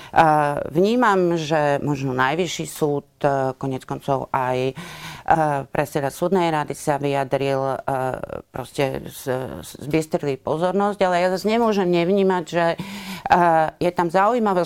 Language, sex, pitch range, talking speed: Slovak, female, 150-190 Hz, 125 wpm